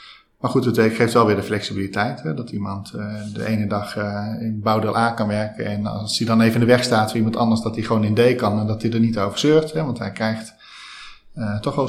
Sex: male